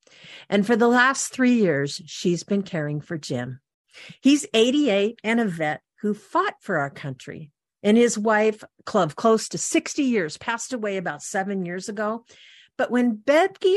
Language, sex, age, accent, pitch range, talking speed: English, female, 50-69, American, 165-235 Hz, 165 wpm